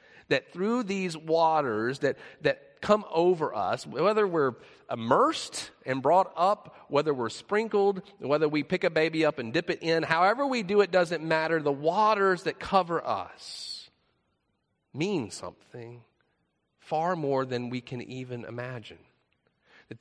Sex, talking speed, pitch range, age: male, 145 wpm, 130-180 Hz, 40-59